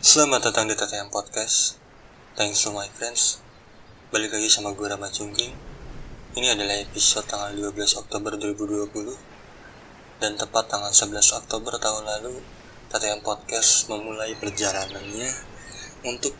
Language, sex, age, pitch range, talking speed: Indonesian, male, 20-39, 105-115 Hz, 125 wpm